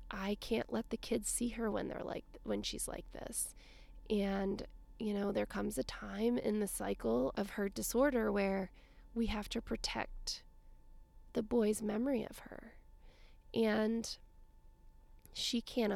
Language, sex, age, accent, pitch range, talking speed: English, female, 20-39, American, 195-235 Hz, 150 wpm